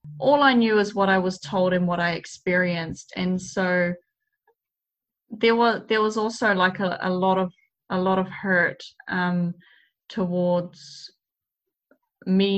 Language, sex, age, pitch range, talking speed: English, female, 10-29, 180-210 Hz, 150 wpm